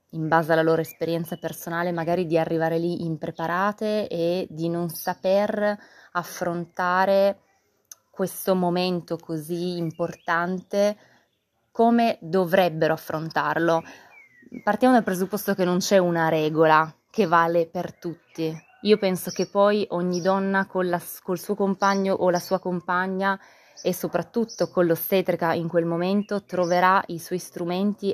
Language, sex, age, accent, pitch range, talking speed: Italian, female, 20-39, native, 165-190 Hz, 125 wpm